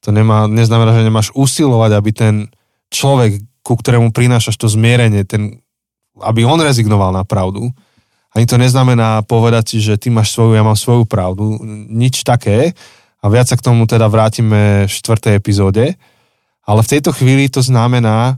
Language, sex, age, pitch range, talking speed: Slovak, male, 20-39, 105-125 Hz, 165 wpm